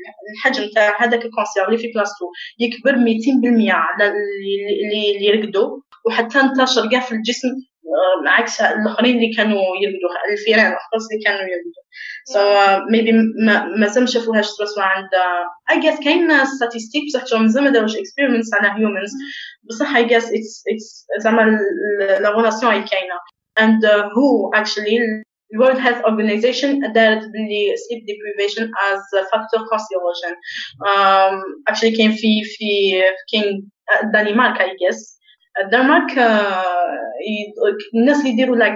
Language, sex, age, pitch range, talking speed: Arabic, female, 20-39, 200-235 Hz, 120 wpm